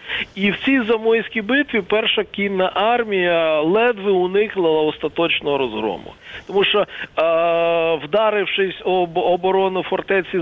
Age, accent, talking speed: 40-59, native, 105 wpm